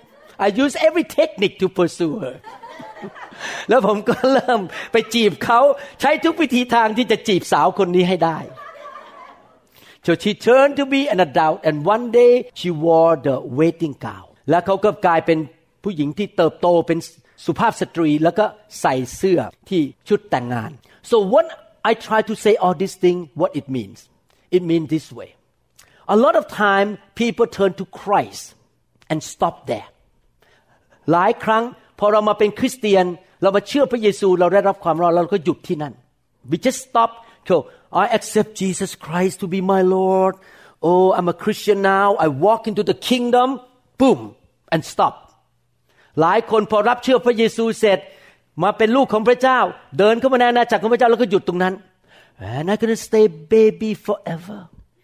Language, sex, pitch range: Thai, male, 170-230 Hz